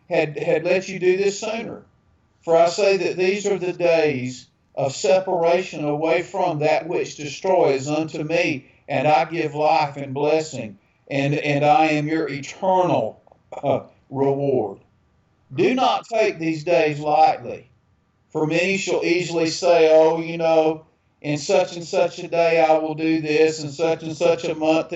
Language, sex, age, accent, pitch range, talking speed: English, male, 50-69, American, 145-175 Hz, 165 wpm